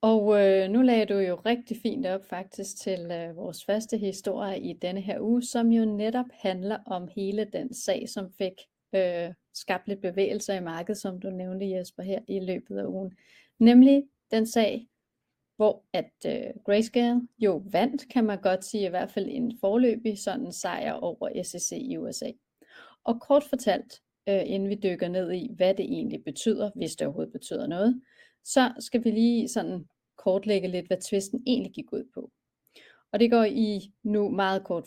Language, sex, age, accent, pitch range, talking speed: Danish, female, 30-49, native, 190-240 Hz, 175 wpm